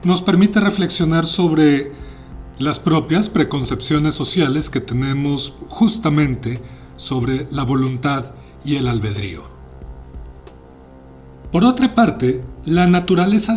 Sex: male